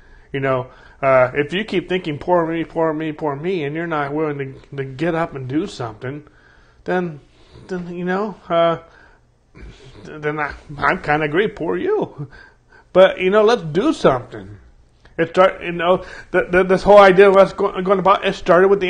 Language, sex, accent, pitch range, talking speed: English, male, American, 135-180 Hz, 195 wpm